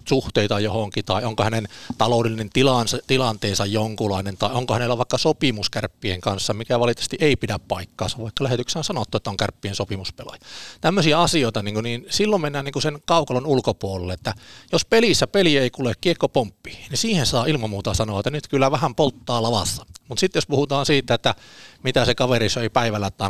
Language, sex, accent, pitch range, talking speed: Finnish, male, native, 105-130 Hz, 185 wpm